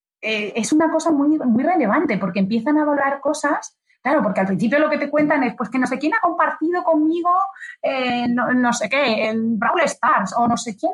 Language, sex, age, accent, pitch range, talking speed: Spanish, female, 30-49, Spanish, 190-275 Hz, 220 wpm